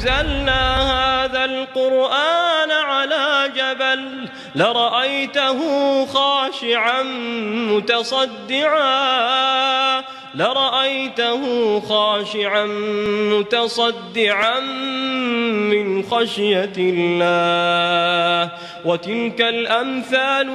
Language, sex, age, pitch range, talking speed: Malay, male, 20-39, 140-235 Hz, 45 wpm